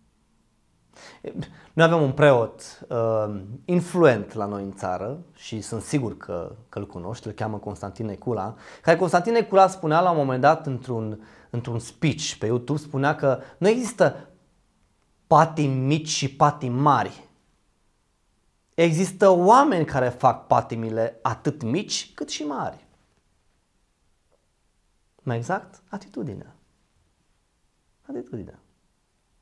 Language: Romanian